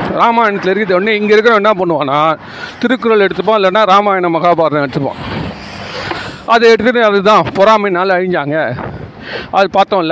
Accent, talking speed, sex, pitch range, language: native, 115 wpm, male, 175-220 Hz, Tamil